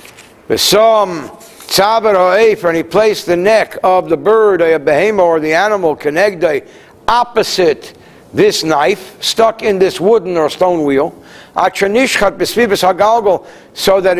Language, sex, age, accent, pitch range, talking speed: English, male, 60-79, American, 155-215 Hz, 120 wpm